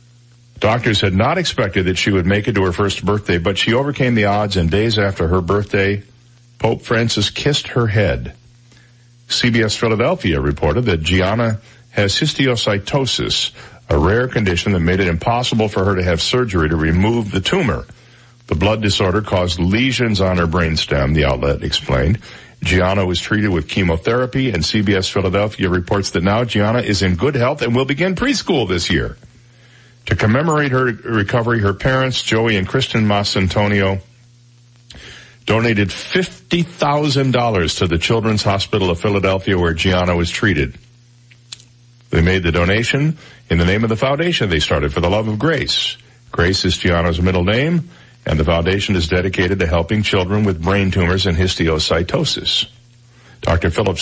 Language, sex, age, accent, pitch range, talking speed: English, male, 50-69, American, 95-120 Hz, 160 wpm